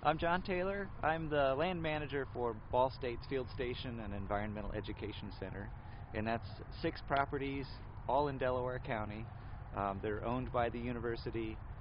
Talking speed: 150 wpm